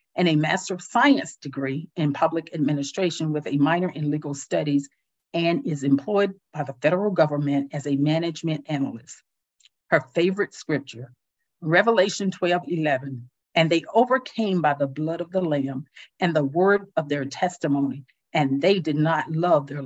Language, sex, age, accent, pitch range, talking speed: English, female, 50-69, American, 140-185 Hz, 160 wpm